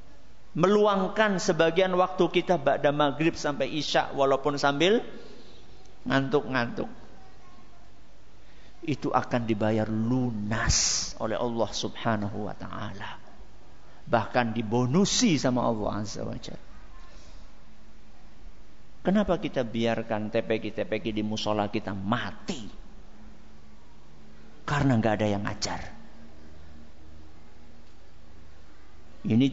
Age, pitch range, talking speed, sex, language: 50-69, 110-160 Hz, 85 wpm, male, Malay